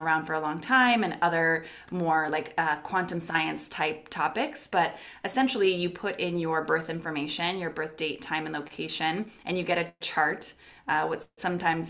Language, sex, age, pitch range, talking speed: English, female, 20-39, 160-190 Hz, 180 wpm